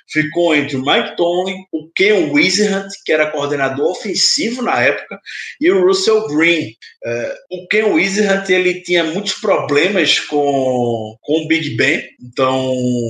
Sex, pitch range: male, 140-170 Hz